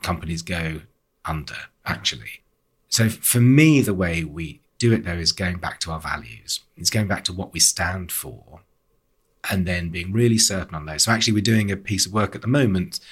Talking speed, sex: 205 wpm, male